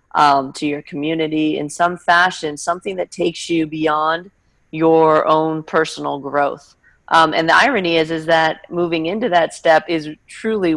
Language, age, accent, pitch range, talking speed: English, 30-49, American, 155-175 Hz, 160 wpm